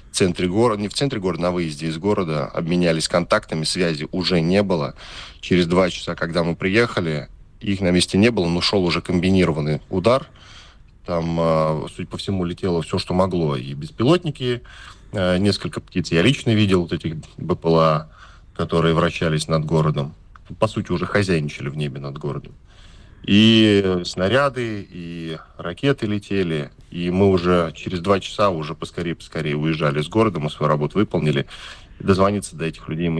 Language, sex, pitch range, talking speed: Russian, male, 80-100 Hz, 155 wpm